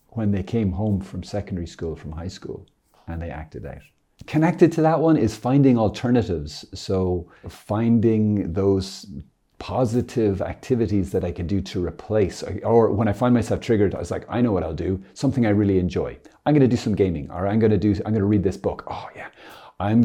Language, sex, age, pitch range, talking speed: English, male, 40-59, 95-120 Hz, 200 wpm